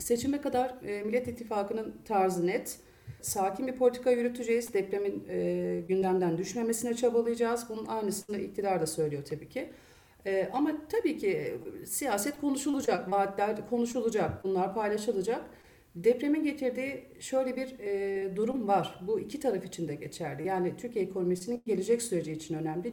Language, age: Turkish, 40-59